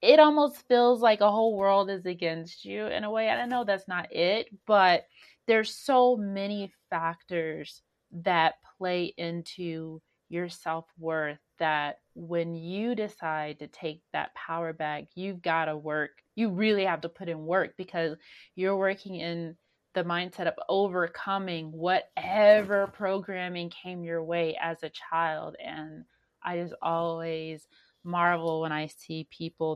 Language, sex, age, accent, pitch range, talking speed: English, female, 30-49, American, 165-205 Hz, 150 wpm